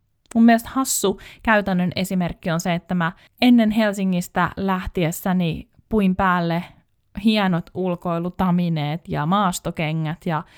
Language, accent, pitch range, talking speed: Finnish, native, 170-210 Hz, 110 wpm